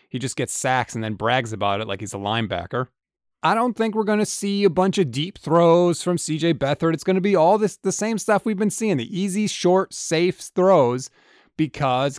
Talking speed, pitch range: 225 wpm, 125-180 Hz